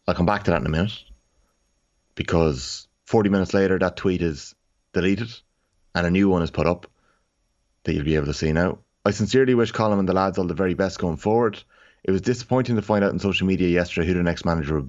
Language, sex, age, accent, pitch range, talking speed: English, male, 30-49, Irish, 80-100 Hz, 235 wpm